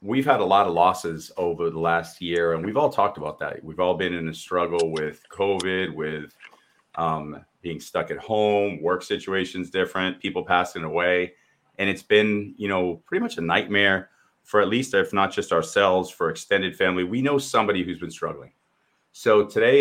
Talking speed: 190 wpm